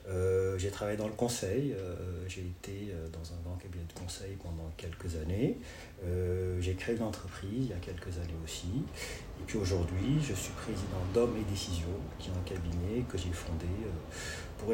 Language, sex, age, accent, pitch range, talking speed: French, male, 40-59, French, 90-110 Hz, 185 wpm